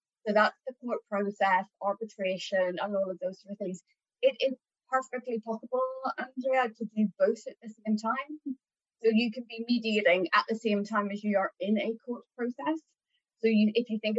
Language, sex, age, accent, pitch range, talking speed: English, female, 30-49, British, 200-235 Hz, 195 wpm